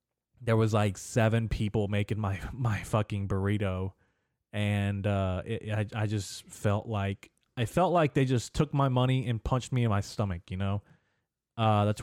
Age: 20-39